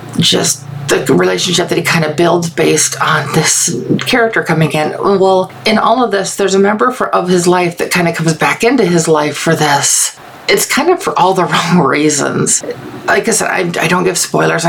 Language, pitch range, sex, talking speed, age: English, 170-200 Hz, female, 215 wpm, 40-59